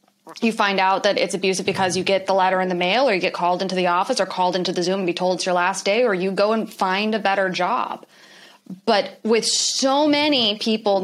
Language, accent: English, American